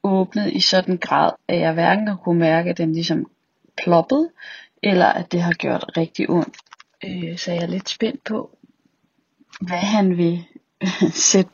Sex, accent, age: female, native, 30-49